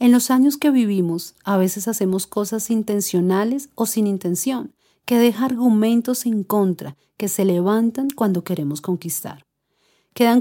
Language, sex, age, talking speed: Spanish, female, 40-59, 145 wpm